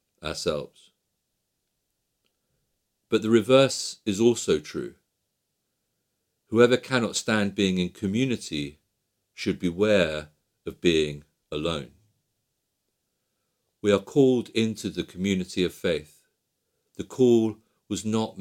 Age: 50-69